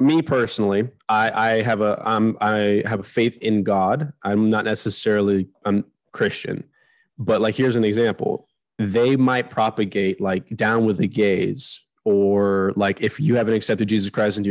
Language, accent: English, American